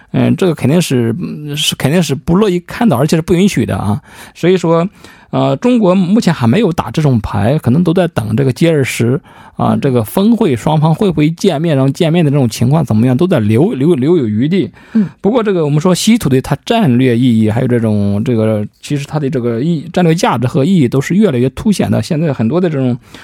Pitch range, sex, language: 120-175 Hz, male, Korean